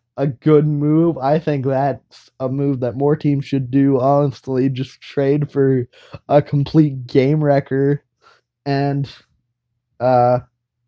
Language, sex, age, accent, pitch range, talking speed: English, male, 20-39, American, 125-150 Hz, 125 wpm